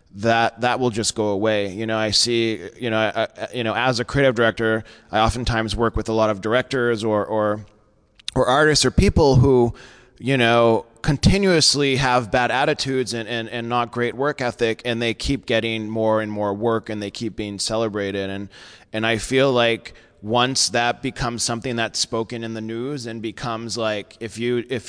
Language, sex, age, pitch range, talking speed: English, male, 20-39, 110-125 Hz, 195 wpm